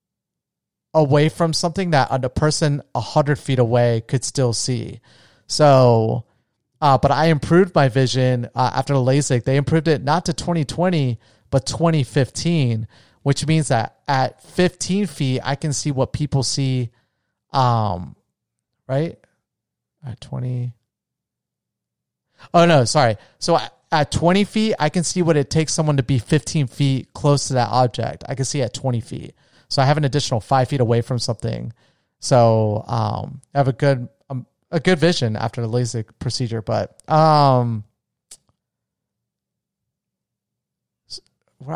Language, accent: English, American